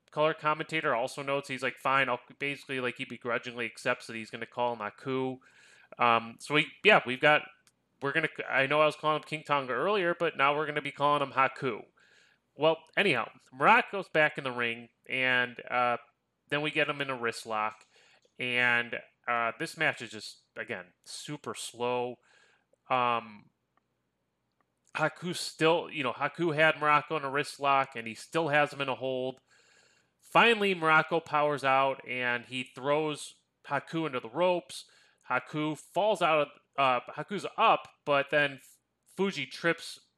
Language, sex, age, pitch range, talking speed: English, male, 20-39, 125-155 Hz, 165 wpm